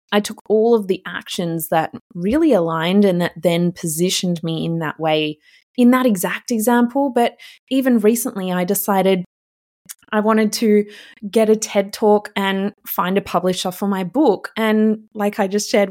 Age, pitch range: 20-39, 185-230 Hz